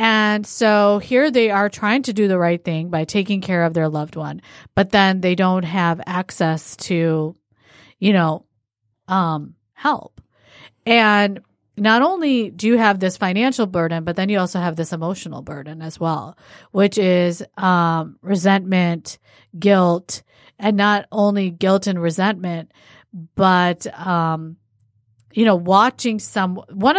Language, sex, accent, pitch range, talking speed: English, female, American, 160-205 Hz, 145 wpm